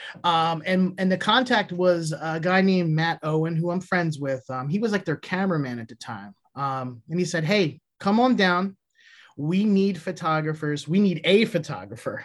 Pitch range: 150-190 Hz